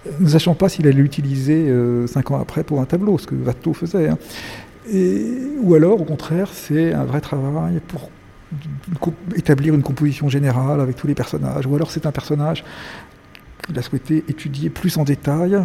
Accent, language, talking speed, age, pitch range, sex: French, French, 190 wpm, 50-69, 135-175 Hz, male